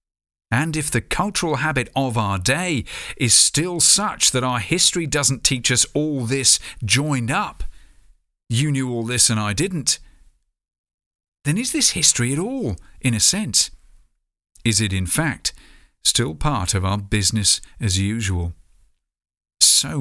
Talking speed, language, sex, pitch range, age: 145 wpm, English, male, 100-140 Hz, 50-69